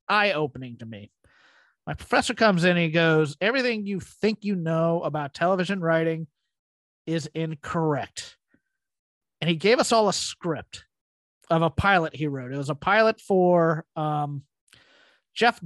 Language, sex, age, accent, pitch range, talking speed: English, male, 30-49, American, 150-190 Hz, 145 wpm